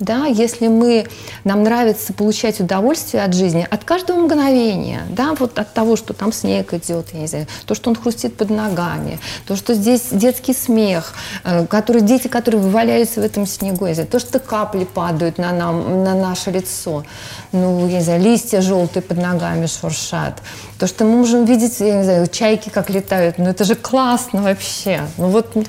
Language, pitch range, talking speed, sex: Russian, 170-230 Hz, 190 wpm, female